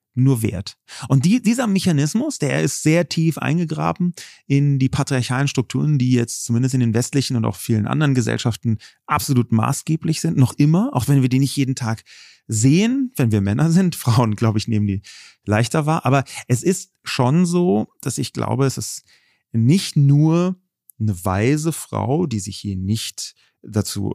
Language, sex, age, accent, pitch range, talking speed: German, male, 30-49, German, 110-145 Hz, 170 wpm